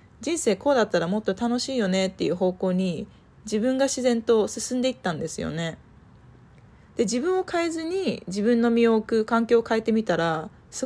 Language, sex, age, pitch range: Japanese, female, 20-39, 180-250 Hz